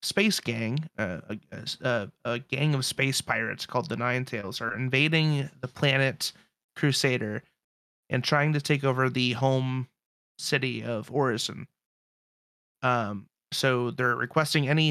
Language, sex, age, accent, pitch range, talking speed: English, male, 30-49, American, 120-140 Hz, 135 wpm